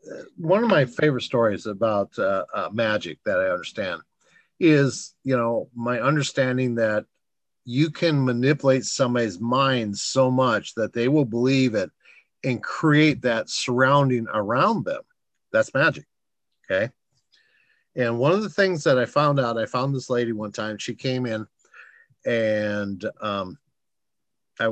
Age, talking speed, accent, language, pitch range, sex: 50-69, 145 wpm, American, English, 110-140 Hz, male